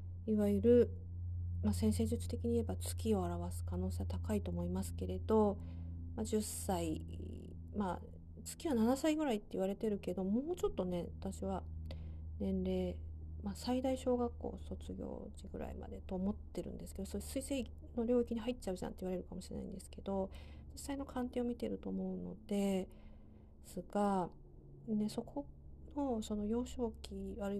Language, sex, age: Japanese, female, 40-59